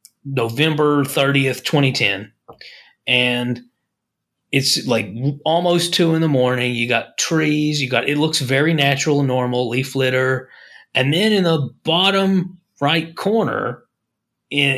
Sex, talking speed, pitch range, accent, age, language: male, 130 wpm, 130-180 Hz, American, 30-49, English